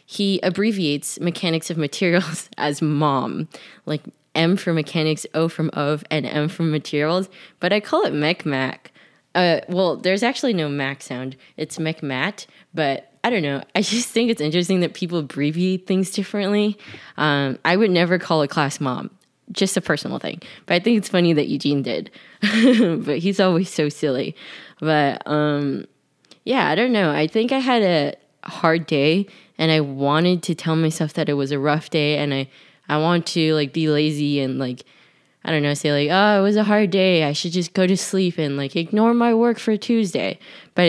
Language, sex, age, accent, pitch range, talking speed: English, female, 20-39, American, 145-195 Hz, 195 wpm